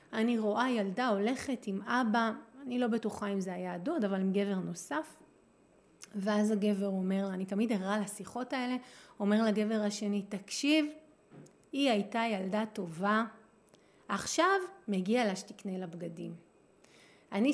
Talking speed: 135 wpm